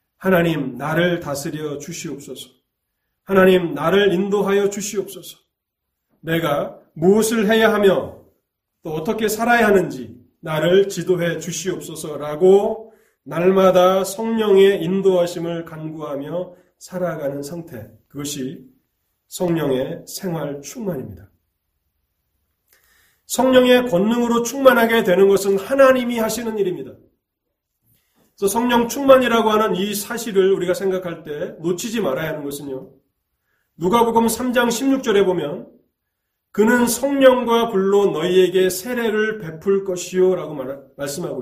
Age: 30-49